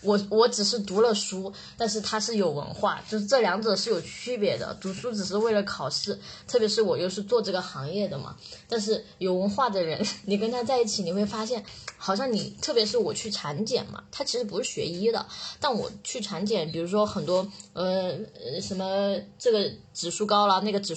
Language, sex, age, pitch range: Chinese, female, 10-29, 185-225 Hz